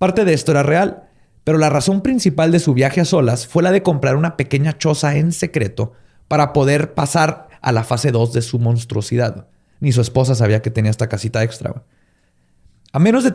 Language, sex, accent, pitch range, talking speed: Spanish, male, Mexican, 125-160 Hz, 200 wpm